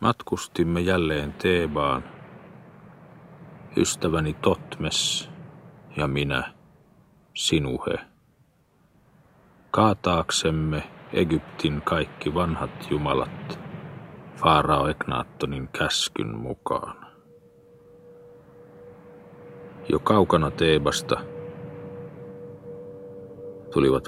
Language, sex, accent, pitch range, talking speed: Finnish, male, native, 70-95 Hz, 50 wpm